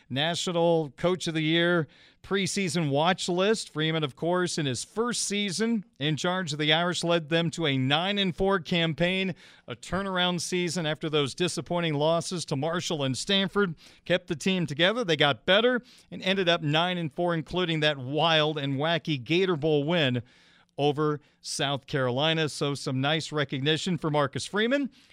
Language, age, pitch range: English, 40-59, 150-185 Hz